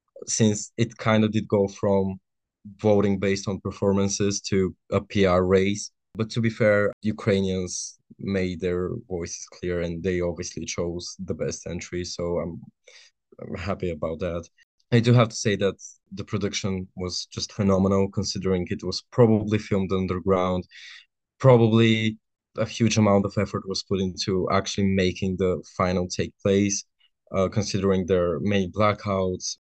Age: 20-39